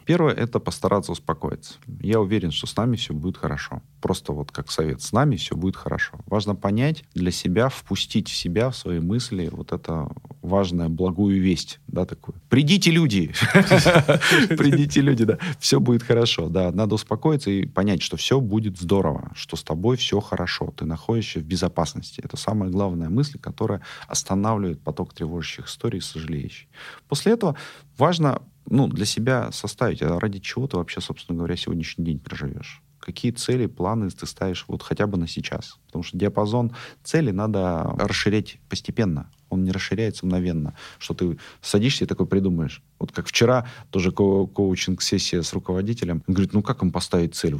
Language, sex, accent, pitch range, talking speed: Russian, male, native, 90-120 Hz, 170 wpm